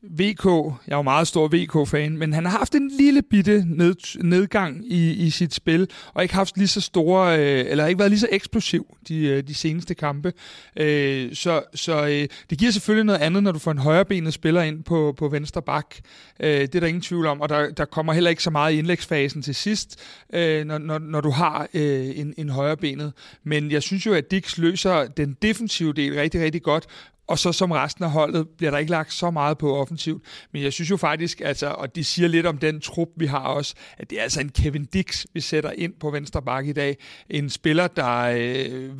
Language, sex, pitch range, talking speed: Danish, male, 150-175 Hz, 220 wpm